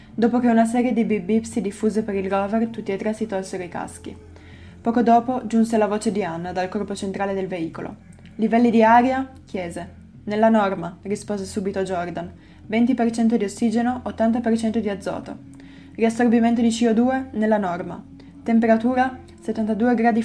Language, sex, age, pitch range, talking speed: Italian, female, 20-39, 190-225 Hz, 155 wpm